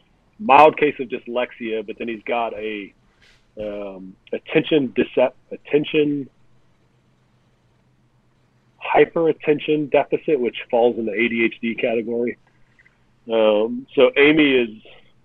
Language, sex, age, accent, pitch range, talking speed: English, male, 40-59, American, 105-130 Hz, 100 wpm